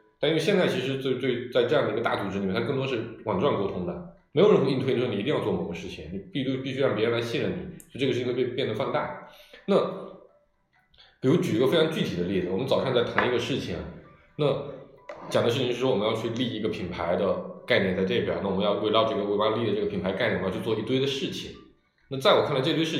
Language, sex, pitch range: Chinese, male, 115-160 Hz